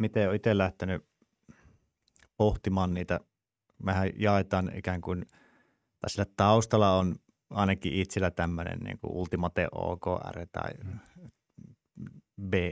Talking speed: 105 wpm